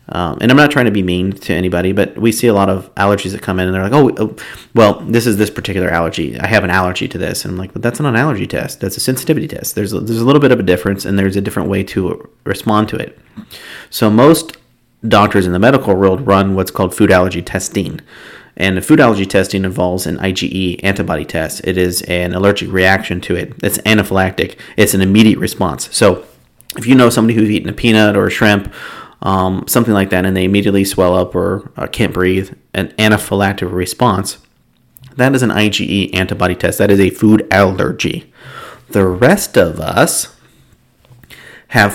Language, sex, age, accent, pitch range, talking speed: English, male, 30-49, American, 95-115 Hz, 210 wpm